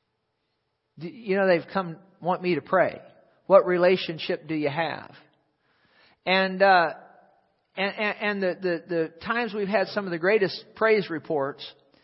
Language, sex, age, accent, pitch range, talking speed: English, male, 50-69, American, 160-195 Hz, 145 wpm